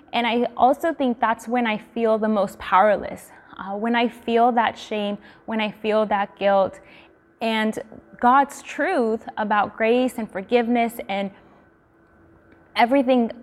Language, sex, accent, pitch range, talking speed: English, female, American, 220-255 Hz, 140 wpm